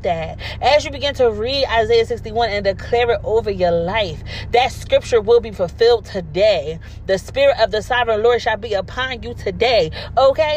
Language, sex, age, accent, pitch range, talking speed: English, female, 30-49, American, 165-280 Hz, 180 wpm